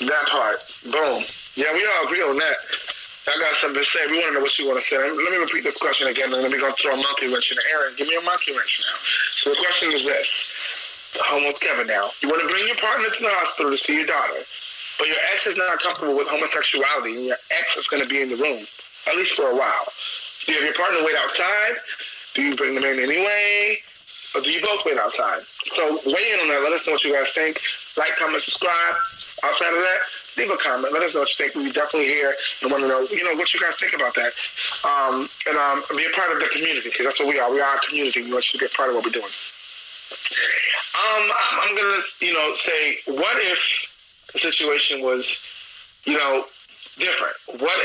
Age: 20-39